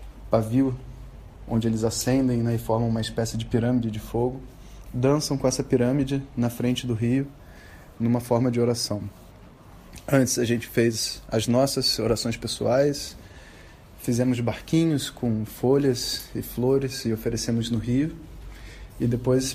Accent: Brazilian